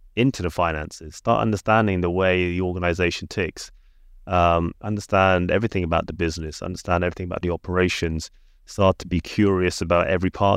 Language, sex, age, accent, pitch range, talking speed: English, male, 30-49, British, 85-100 Hz, 160 wpm